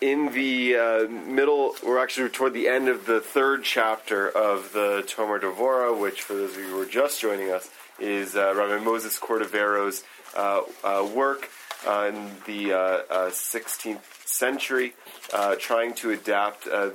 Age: 30-49